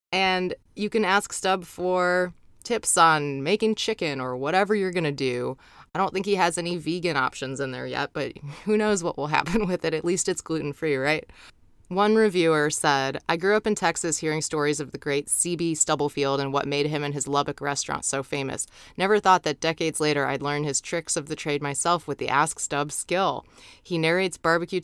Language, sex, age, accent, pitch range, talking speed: English, female, 20-39, American, 140-175 Hz, 210 wpm